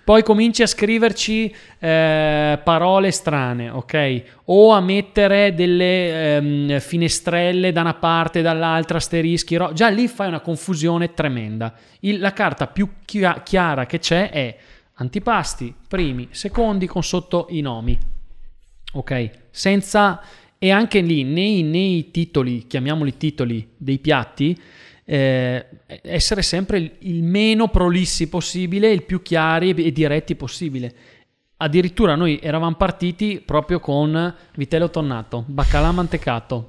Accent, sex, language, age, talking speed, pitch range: native, male, Italian, 30-49, 130 wpm, 140-180 Hz